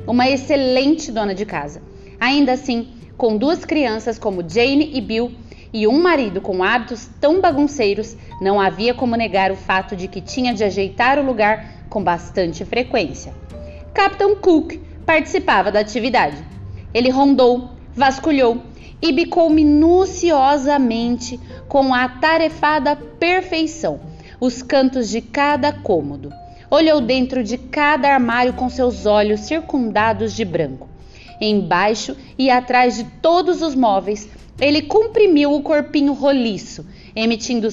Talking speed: 130 wpm